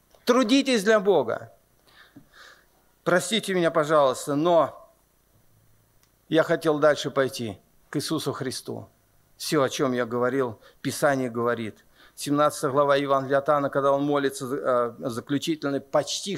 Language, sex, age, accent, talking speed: Russian, male, 50-69, native, 115 wpm